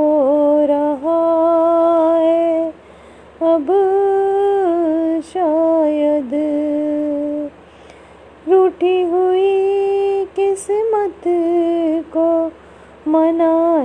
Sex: female